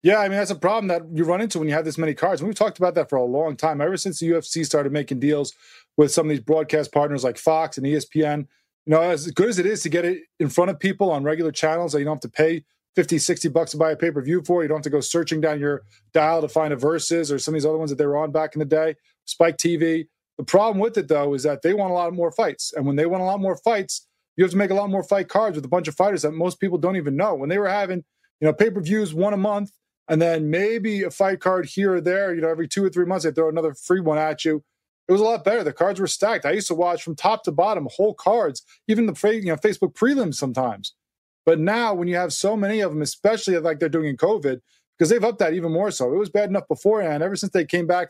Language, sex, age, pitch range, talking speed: English, male, 20-39, 155-195 Hz, 295 wpm